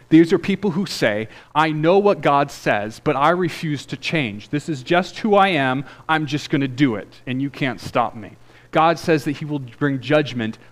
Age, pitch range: 30-49, 110-155 Hz